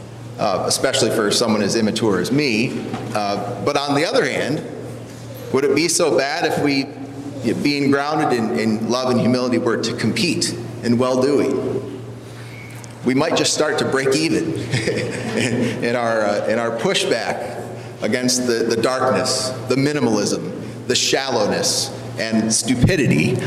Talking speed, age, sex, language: 140 wpm, 30-49, male, English